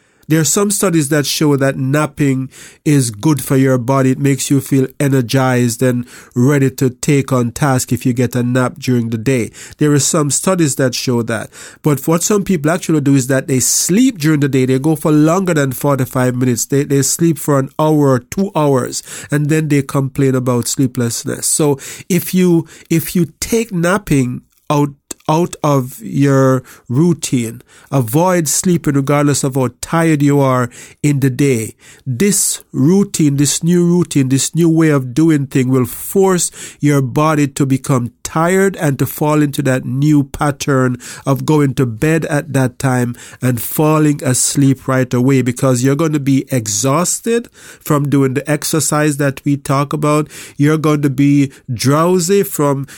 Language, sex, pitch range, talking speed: English, male, 130-155 Hz, 175 wpm